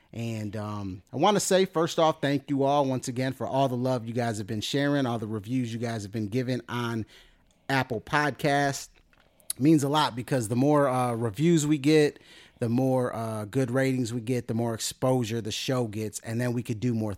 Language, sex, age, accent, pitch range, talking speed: English, male, 30-49, American, 105-135 Hz, 215 wpm